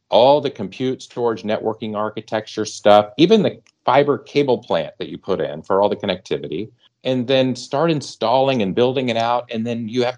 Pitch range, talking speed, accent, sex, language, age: 90-125 Hz, 190 wpm, American, male, English, 40-59